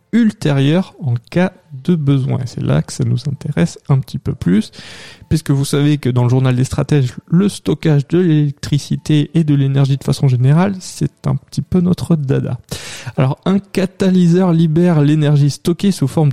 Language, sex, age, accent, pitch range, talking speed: French, male, 20-39, French, 135-170 Hz, 180 wpm